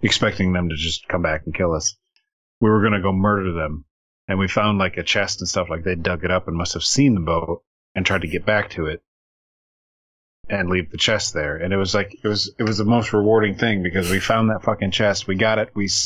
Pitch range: 90-110 Hz